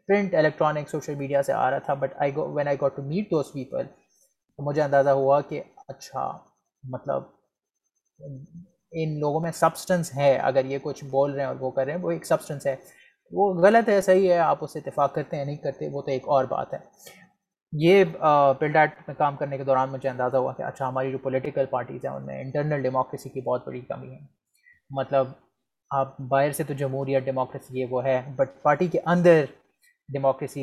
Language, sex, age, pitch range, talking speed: Urdu, male, 20-39, 135-160 Hz, 200 wpm